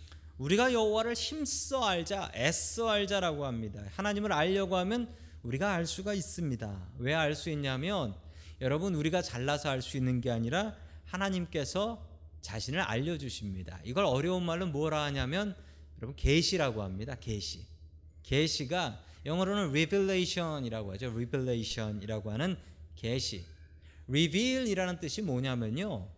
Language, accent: Korean, native